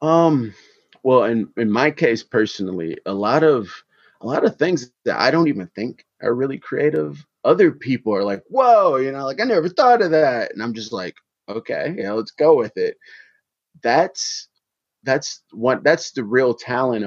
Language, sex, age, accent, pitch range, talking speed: English, male, 30-49, American, 105-145 Hz, 185 wpm